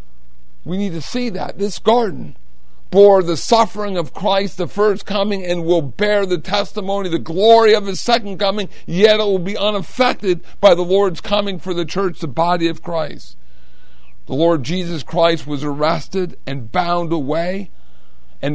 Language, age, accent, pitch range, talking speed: English, 50-69, American, 140-175 Hz, 170 wpm